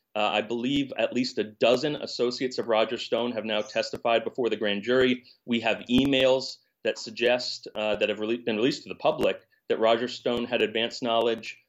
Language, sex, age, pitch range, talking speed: English, male, 30-49, 115-140 Hz, 195 wpm